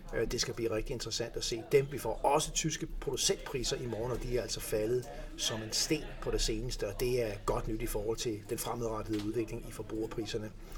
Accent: native